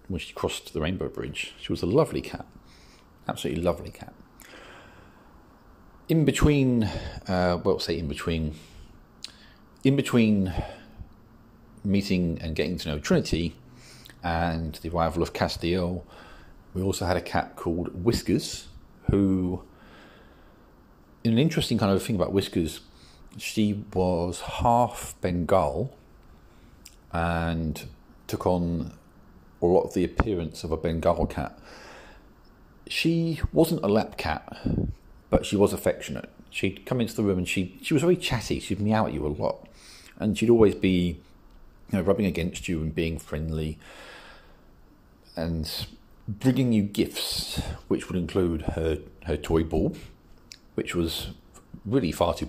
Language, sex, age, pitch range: English, male, 40-59, 80-105 Hz